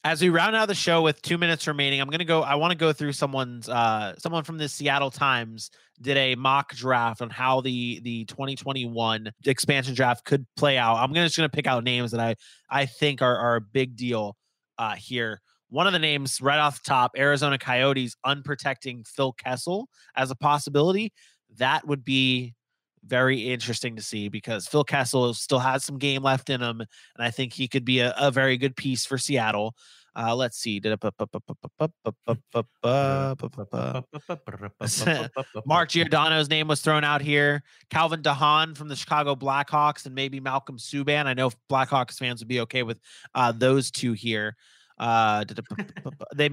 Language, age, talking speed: English, 20-39, 175 wpm